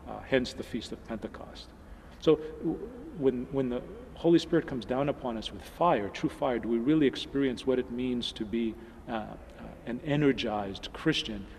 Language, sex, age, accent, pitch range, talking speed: English, male, 40-59, American, 105-130 Hz, 180 wpm